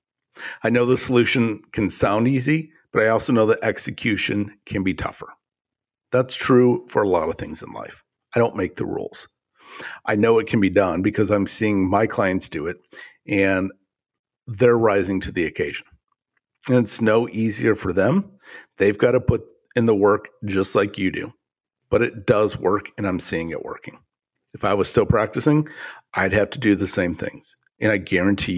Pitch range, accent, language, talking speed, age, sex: 100-125 Hz, American, English, 190 wpm, 50-69, male